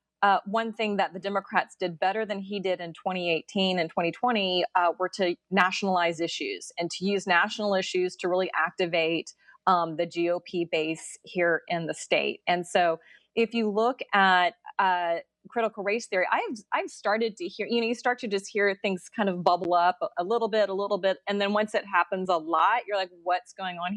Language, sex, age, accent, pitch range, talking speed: English, female, 30-49, American, 180-215 Hz, 205 wpm